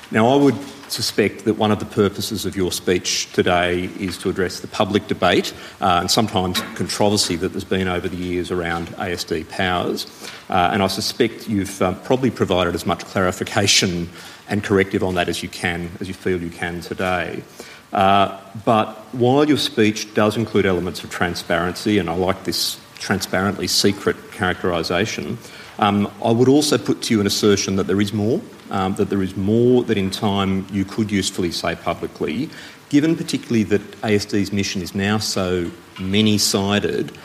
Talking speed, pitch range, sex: 170 wpm, 90-105 Hz, male